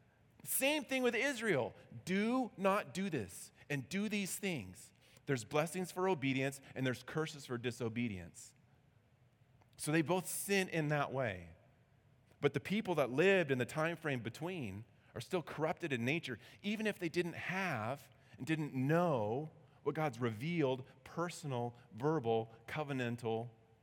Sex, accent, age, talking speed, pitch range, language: male, American, 30-49, 145 wpm, 120-170 Hz, English